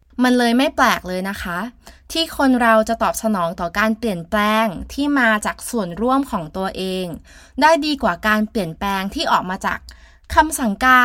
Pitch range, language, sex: 200-260 Hz, Thai, female